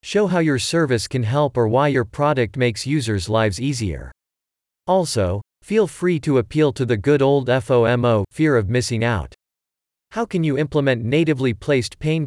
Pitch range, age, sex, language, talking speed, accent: 105-150 Hz, 40-59, male, English, 170 wpm, American